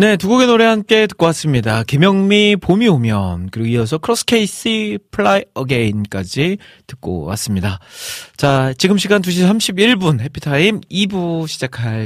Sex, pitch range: male, 105-155 Hz